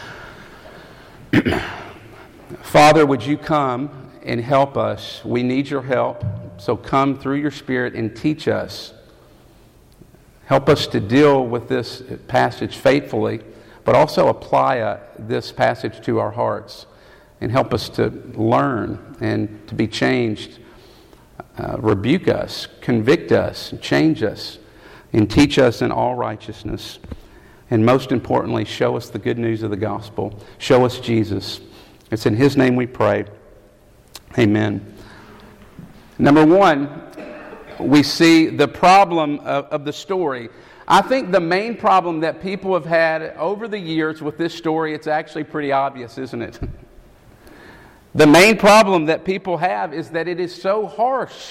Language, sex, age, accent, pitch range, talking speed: English, male, 50-69, American, 115-160 Hz, 140 wpm